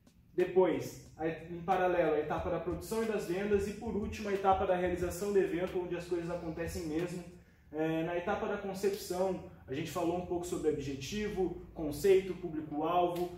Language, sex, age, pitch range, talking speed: Portuguese, male, 20-39, 160-185 Hz, 170 wpm